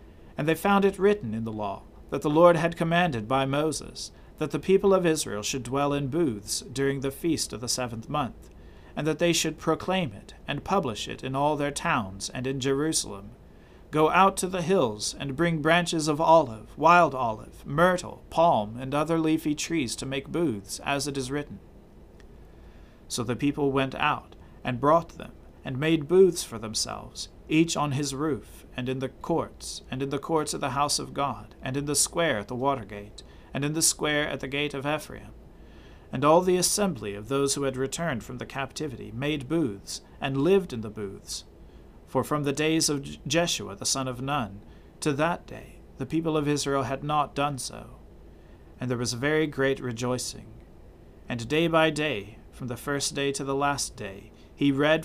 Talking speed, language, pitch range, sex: 195 wpm, English, 110-155 Hz, male